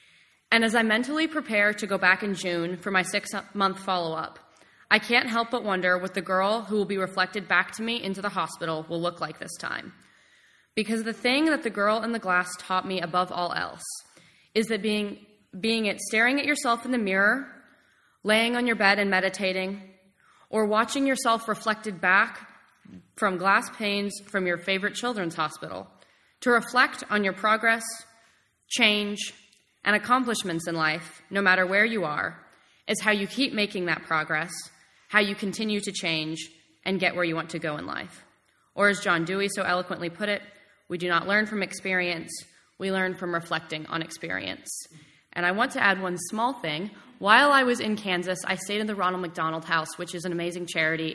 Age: 20-39